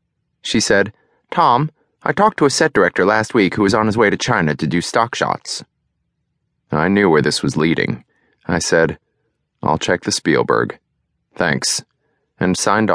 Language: English